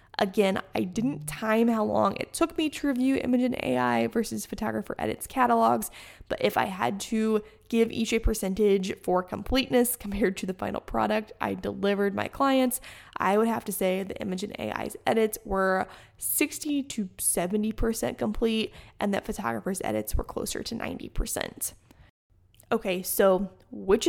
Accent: American